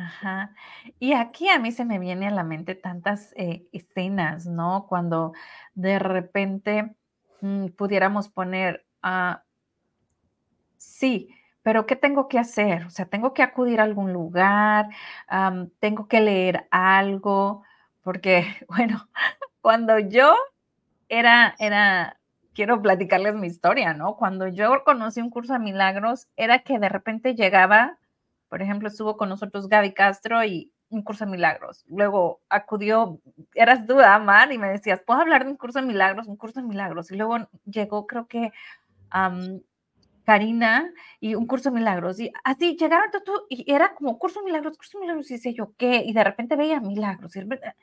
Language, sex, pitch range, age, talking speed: Spanish, female, 195-250 Hz, 30-49, 160 wpm